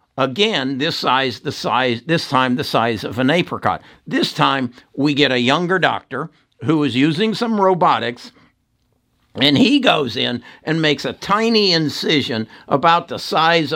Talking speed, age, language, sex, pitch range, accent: 155 wpm, 60-79, English, male, 135-185 Hz, American